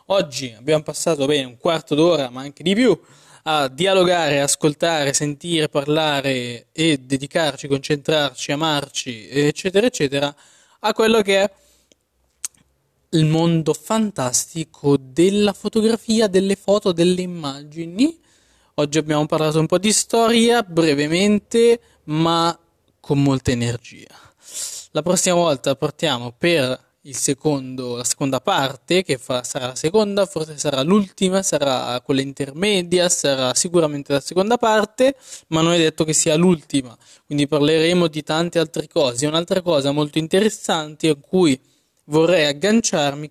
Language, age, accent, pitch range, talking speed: Italian, 20-39, native, 140-190 Hz, 130 wpm